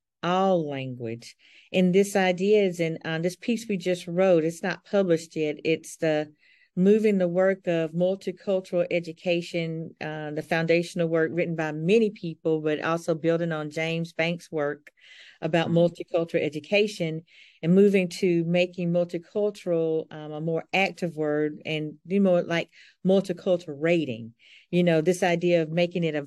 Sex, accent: female, American